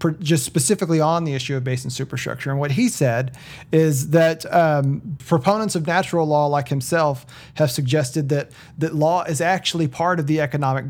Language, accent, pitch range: English, American, 130-155 Hz